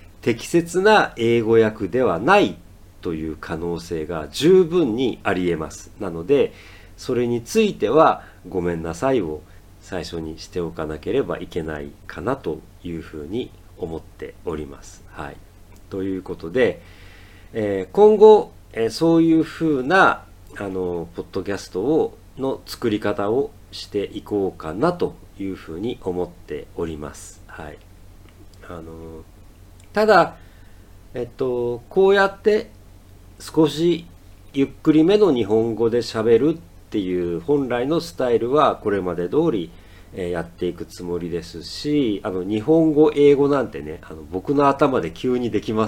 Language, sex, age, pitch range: Japanese, male, 40-59, 90-120 Hz